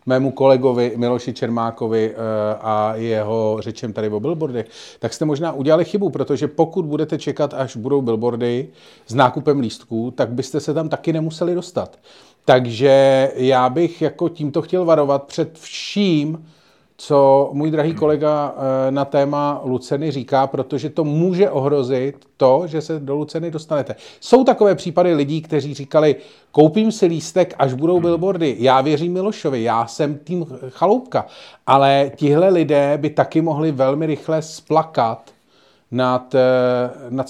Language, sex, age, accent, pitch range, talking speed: Czech, male, 40-59, native, 130-160 Hz, 145 wpm